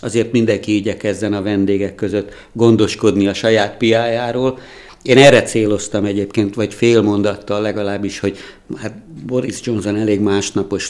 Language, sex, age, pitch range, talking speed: Hungarian, male, 60-79, 100-115 Hz, 125 wpm